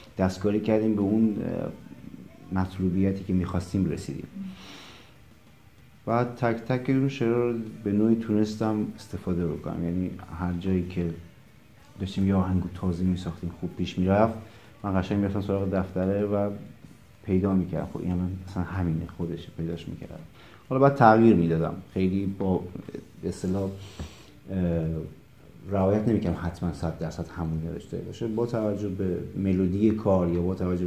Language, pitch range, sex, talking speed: Persian, 90-110 Hz, male, 135 wpm